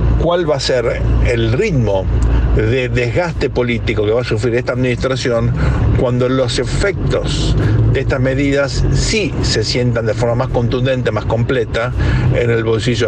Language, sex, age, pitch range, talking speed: Spanish, male, 60-79, 115-135 Hz, 150 wpm